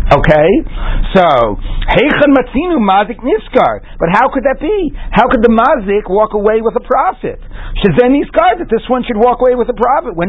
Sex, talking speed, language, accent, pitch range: male, 185 wpm, English, American, 165-245 Hz